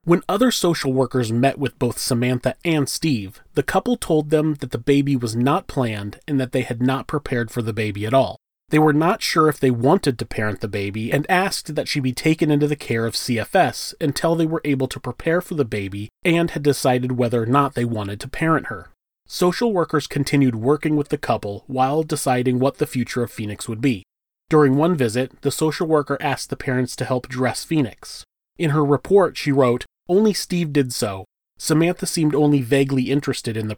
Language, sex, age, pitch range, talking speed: English, male, 30-49, 125-155 Hz, 210 wpm